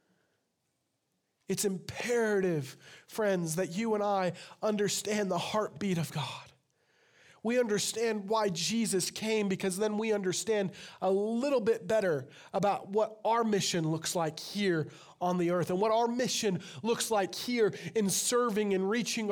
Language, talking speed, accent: English, 145 wpm, American